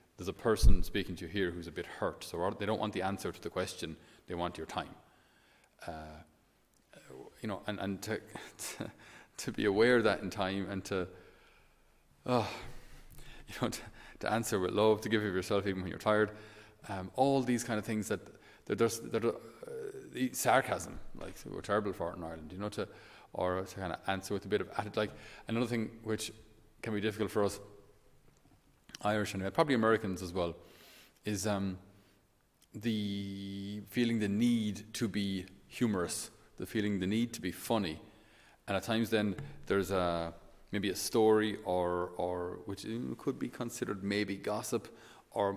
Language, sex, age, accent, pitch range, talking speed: English, male, 30-49, Irish, 95-110 Hz, 185 wpm